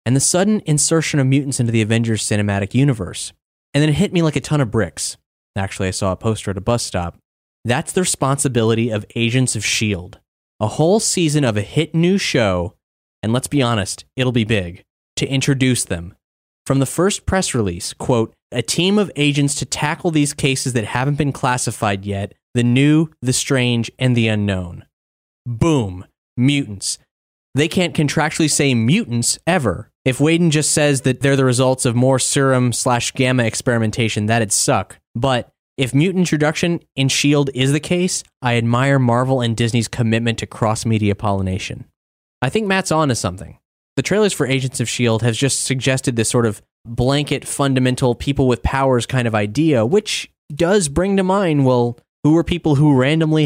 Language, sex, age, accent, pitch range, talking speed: English, male, 20-39, American, 110-145 Hz, 175 wpm